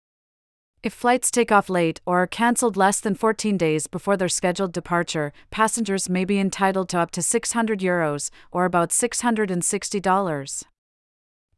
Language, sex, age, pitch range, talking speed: English, female, 30-49, 165-200 Hz, 140 wpm